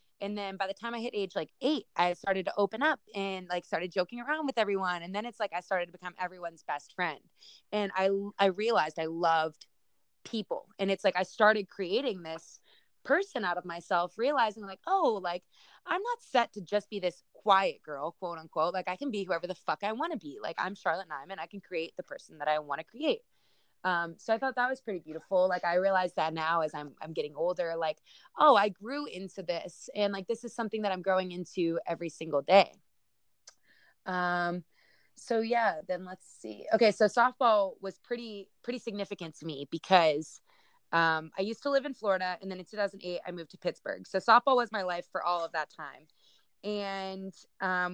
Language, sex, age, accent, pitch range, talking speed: English, female, 20-39, American, 175-220 Hz, 215 wpm